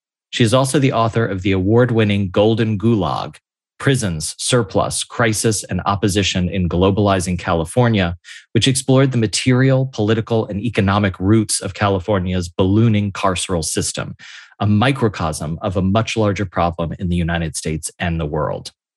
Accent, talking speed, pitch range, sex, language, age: American, 140 wpm, 95-115 Hz, male, English, 30-49